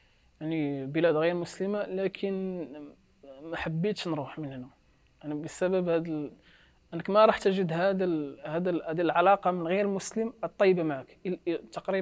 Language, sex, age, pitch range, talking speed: Arabic, male, 20-39, 155-195 Hz, 150 wpm